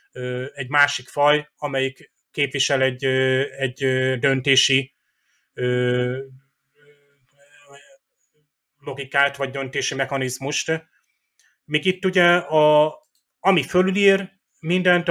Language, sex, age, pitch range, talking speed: Hungarian, male, 30-49, 130-150 Hz, 80 wpm